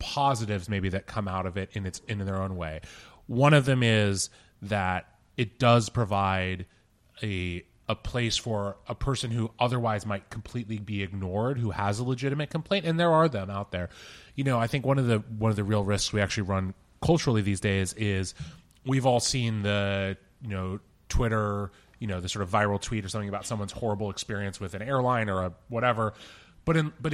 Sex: male